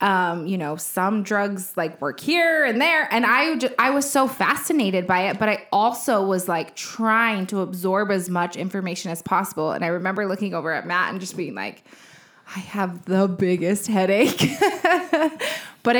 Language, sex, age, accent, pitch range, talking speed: English, female, 20-39, American, 180-220 Hz, 185 wpm